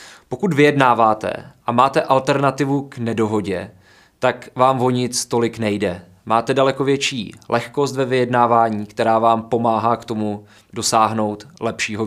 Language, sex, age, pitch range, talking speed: Czech, male, 20-39, 110-130 Hz, 130 wpm